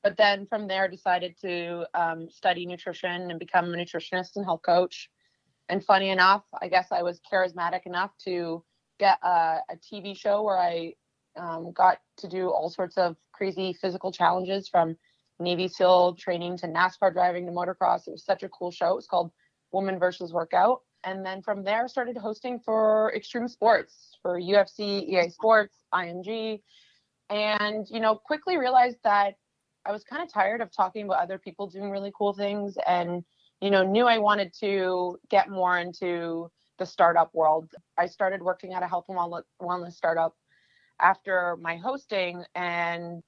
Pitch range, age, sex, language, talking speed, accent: 175-200 Hz, 20-39, female, English, 170 wpm, American